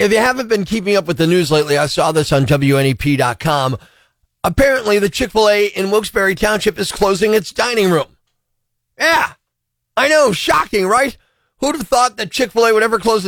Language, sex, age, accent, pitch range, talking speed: English, male, 40-59, American, 165-230 Hz, 175 wpm